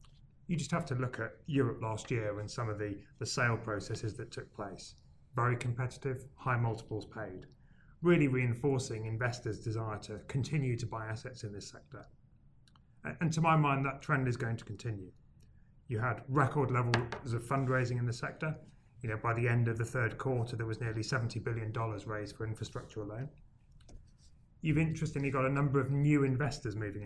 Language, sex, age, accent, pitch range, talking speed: English, male, 30-49, British, 110-135 Hz, 180 wpm